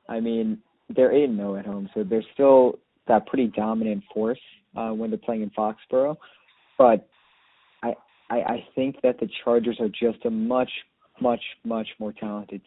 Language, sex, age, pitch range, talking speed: English, male, 20-39, 105-120 Hz, 170 wpm